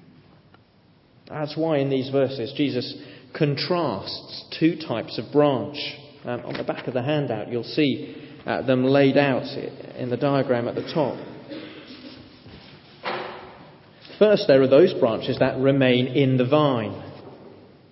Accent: British